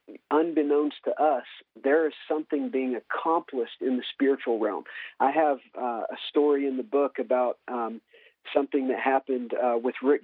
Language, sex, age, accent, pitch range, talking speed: English, male, 40-59, American, 125-145 Hz, 165 wpm